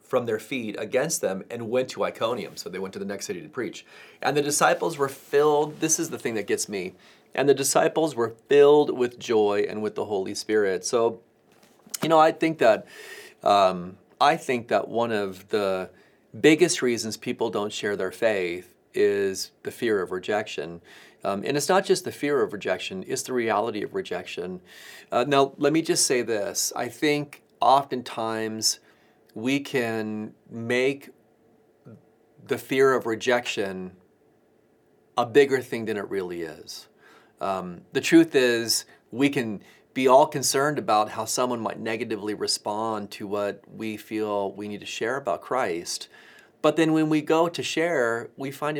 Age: 30-49